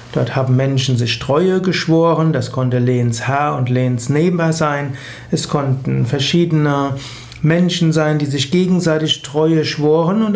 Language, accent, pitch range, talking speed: German, German, 130-170 Hz, 140 wpm